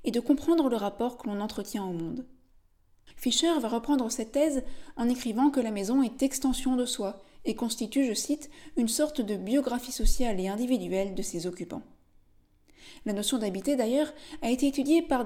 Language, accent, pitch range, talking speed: French, French, 220-290 Hz, 180 wpm